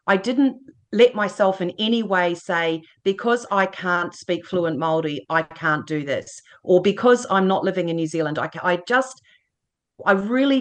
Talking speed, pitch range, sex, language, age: 175 wpm, 160-210 Hz, female, English, 40-59